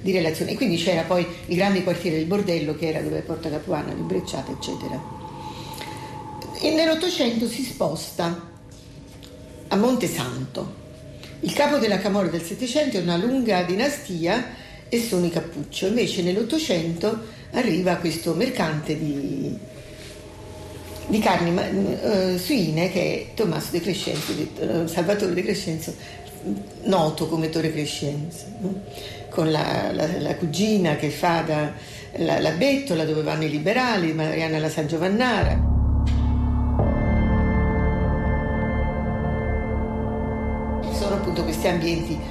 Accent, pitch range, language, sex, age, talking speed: native, 145-195 Hz, Italian, female, 40-59, 120 wpm